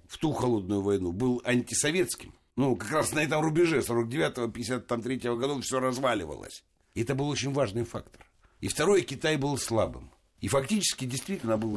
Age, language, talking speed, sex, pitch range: 60-79, Russian, 160 wpm, male, 110-150 Hz